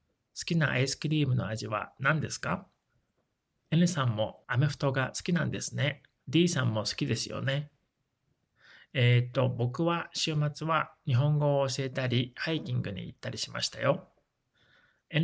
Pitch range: 125-160 Hz